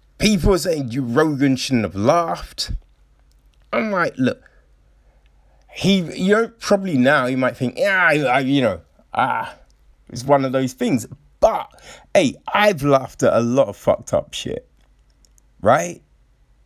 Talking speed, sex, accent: 150 wpm, male, British